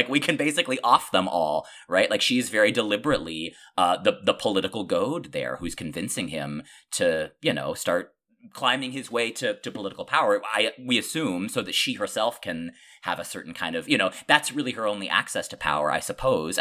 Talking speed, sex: 200 wpm, male